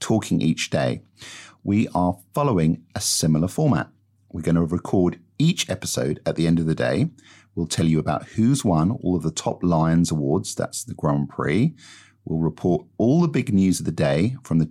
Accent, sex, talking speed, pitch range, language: British, male, 195 wpm, 80-105 Hz, English